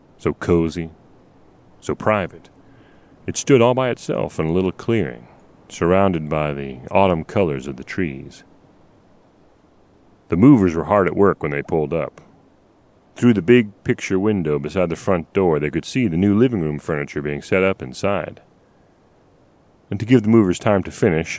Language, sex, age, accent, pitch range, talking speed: English, male, 40-59, American, 75-100 Hz, 170 wpm